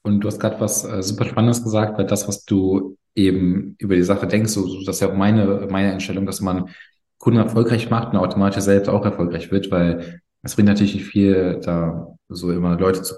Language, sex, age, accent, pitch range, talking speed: German, male, 20-39, German, 100-115 Hz, 220 wpm